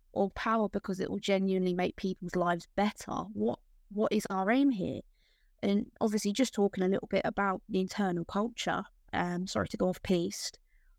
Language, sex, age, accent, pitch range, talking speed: English, female, 20-39, British, 185-235 Hz, 180 wpm